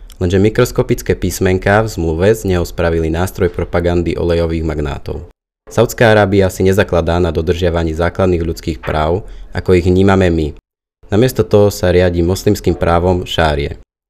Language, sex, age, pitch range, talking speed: Slovak, male, 30-49, 85-100 Hz, 135 wpm